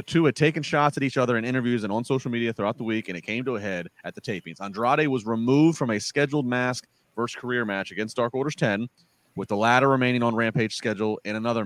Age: 30-49